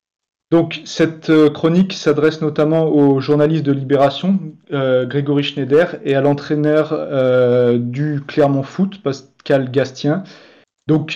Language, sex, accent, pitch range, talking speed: French, male, French, 140-160 Hz, 120 wpm